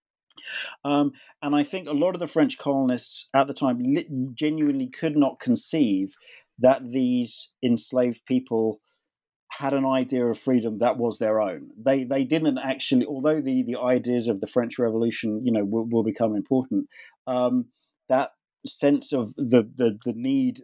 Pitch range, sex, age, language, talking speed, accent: 115-140 Hz, male, 40-59, English, 165 wpm, British